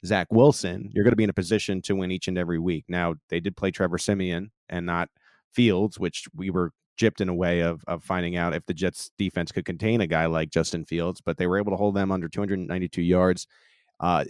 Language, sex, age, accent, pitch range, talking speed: English, male, 30-49, American, 90-110 Hz, 240 wpm